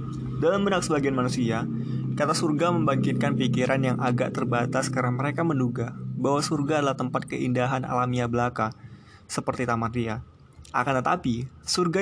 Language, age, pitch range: Indonesian, 20-39, 120-135 Hz